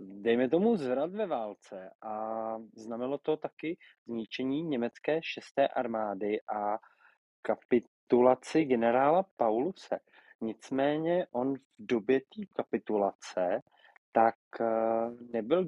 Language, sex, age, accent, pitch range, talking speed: Czech, male, 20-39, native, 110-135 Hz, 95 wpm